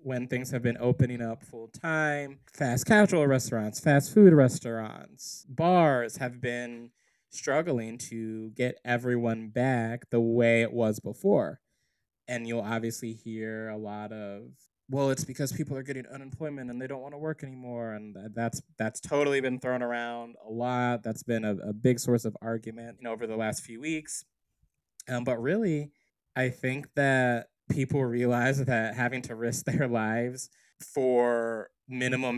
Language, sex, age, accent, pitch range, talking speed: English, male, 20-39, American, 115-135 Hz, 160 wpm